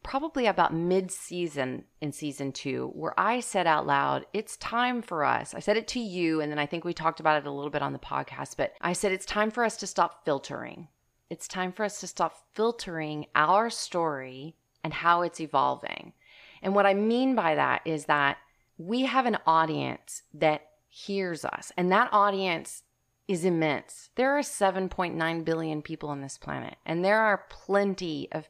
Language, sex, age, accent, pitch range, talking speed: English, female, 30-49, American, 150-200 Hz, 190 wpm